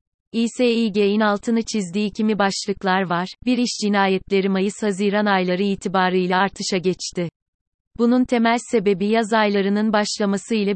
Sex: female